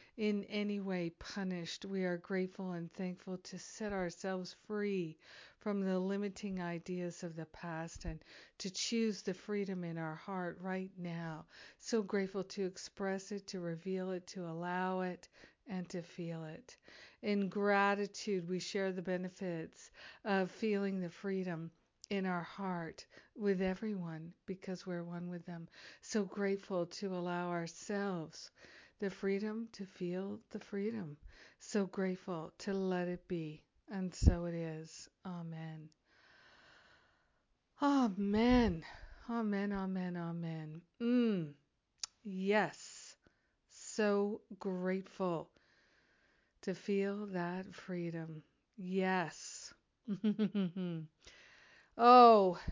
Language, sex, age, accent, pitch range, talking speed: English, female, 60-79, American, 175-205 Hz, 115 wpm